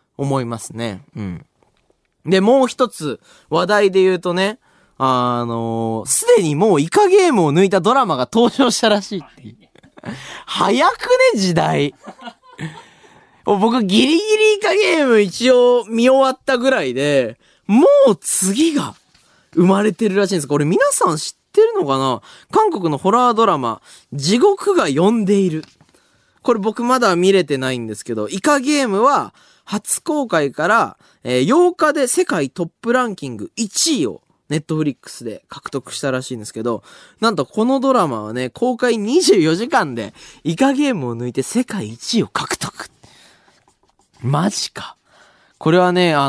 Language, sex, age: Japanese, male, 20-39